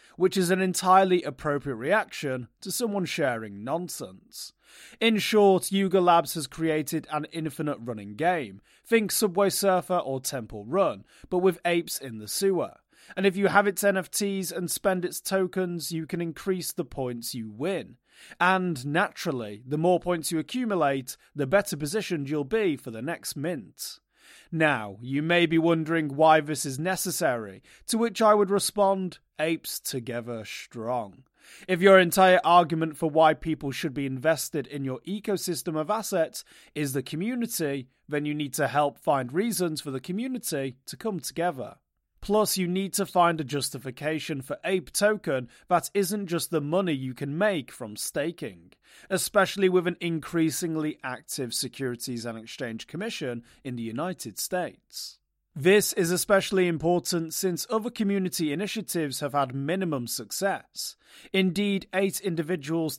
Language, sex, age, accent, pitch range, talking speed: English, male, 30-49, British, 140-190 Hz, 155 wpm